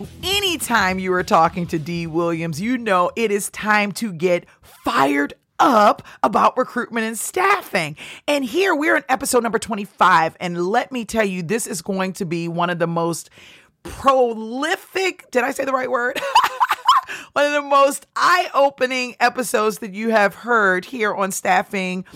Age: 40-59